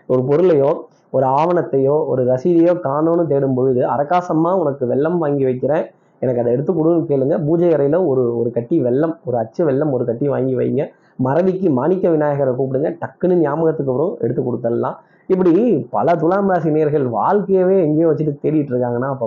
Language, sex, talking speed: Tamil, male, 150 wpm